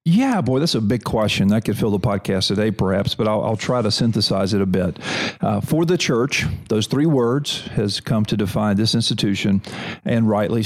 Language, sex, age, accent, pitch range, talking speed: English, male, 50-69, American, 110-135 Hz, 210 wpm